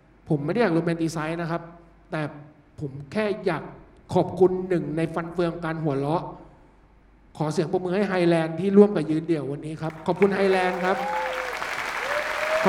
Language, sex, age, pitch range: Thai, male, 60-79, 170-210 Hz